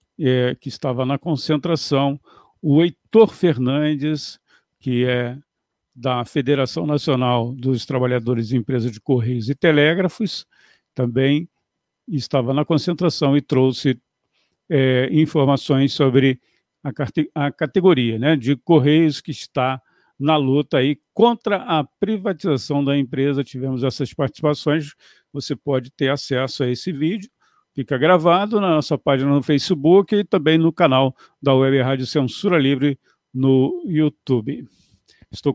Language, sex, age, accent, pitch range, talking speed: Portuguese, male, 50-69, Brazilian, 135-165 Hz, 120 wpm